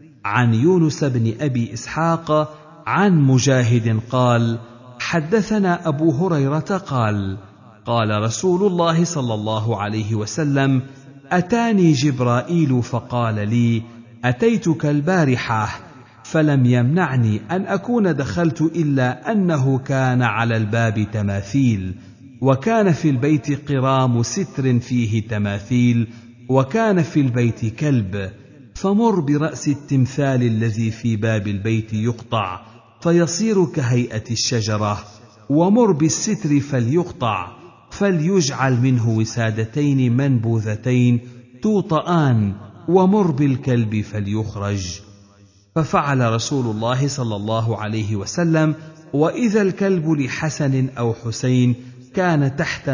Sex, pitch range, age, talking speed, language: male, 115-155 Hz, 50-69, 95 wpm, Arabic